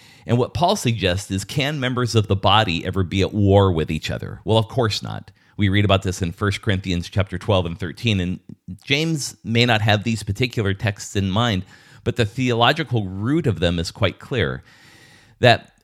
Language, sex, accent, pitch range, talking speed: English, male, American, 95-120 Hz, 195 wpm